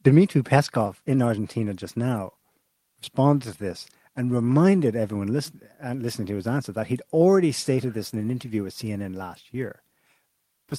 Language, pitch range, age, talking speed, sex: English, 105-145 Hz, 30-49, 160 wpm, male